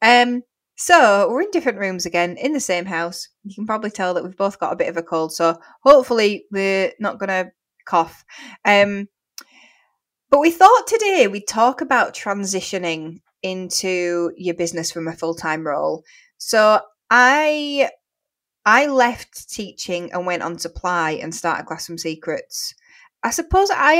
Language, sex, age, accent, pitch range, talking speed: English, female, 20-39, British, 170-225 Hz, 155 wpm